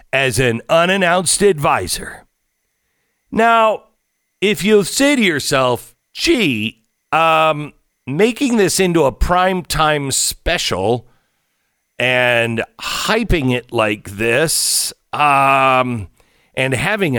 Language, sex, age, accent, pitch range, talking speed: English, male, 50-69, American, 115-165 Hz, 90 wpm